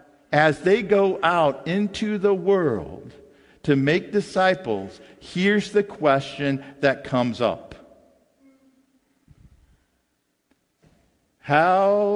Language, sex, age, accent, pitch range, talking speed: English, male, 50-69, American, 140-215 Hz, 85 wpm